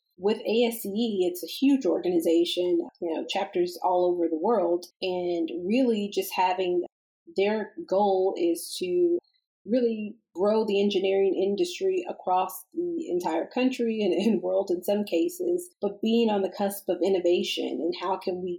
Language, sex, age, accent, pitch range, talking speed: English, female, 30-49, American, 180-235 Hz, 150 wpm